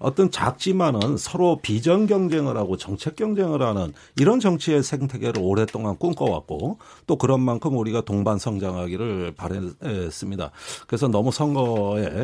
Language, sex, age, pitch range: Korean, male, 40-59, 105-150 Hz